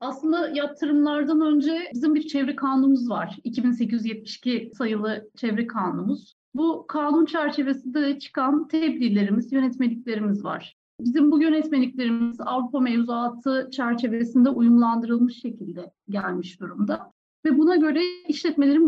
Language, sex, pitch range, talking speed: Turkish, female, 235-295 Hz, 105 wpm